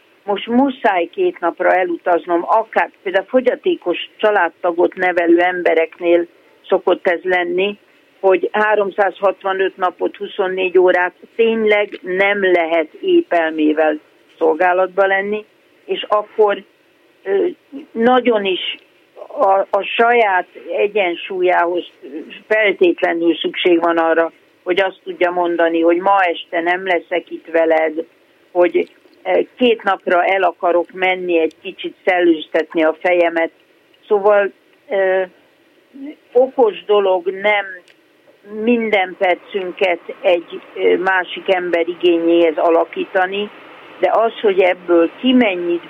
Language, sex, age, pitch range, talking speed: Hungarian, female, 50-69, 170-220 Hz, 100 wpm